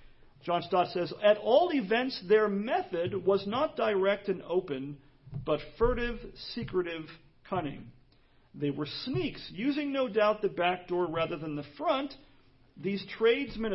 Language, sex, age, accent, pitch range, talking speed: English, male, 40-59, American, 155-230 Hz, 140 wpm